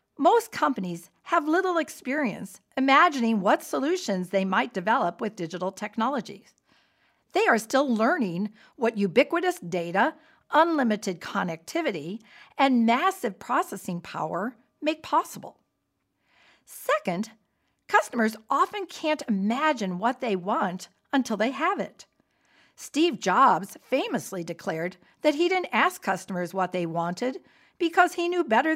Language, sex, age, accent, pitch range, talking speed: English, female, 50-69, American, 195-315 Hz, 120 wpm